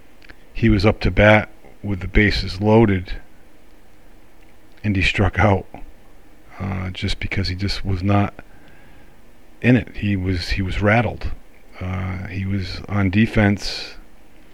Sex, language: male, English